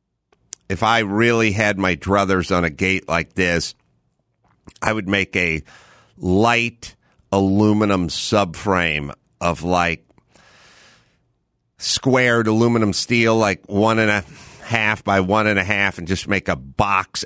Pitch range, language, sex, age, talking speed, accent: 90-120 Hz, English, male, 50-69, 130 wpm, American